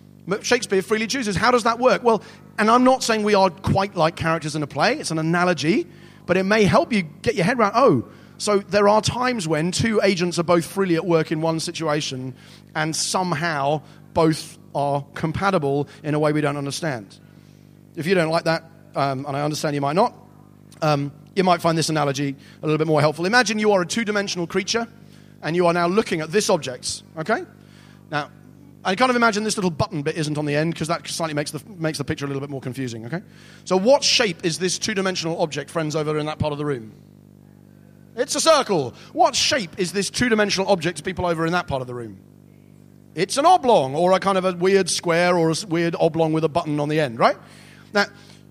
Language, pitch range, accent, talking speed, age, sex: English, 155-195 Hz, British, 225 wpm, 30-49, male